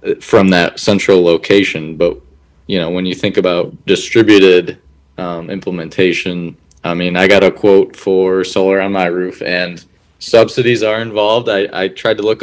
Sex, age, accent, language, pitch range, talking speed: male, 20-39, American, English, 90-105 Hz, 165 wpm